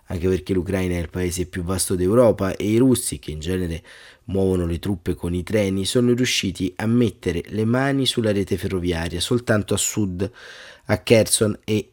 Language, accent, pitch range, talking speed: Italian, native, 95-115 Hz, 180 wpm